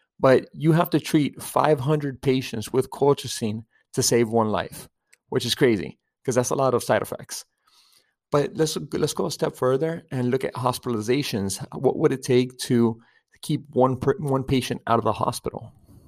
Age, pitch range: 30-49, 115-140 Hz